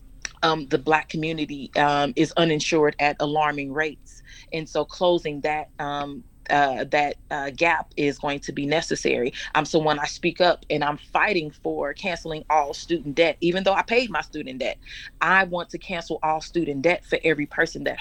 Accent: American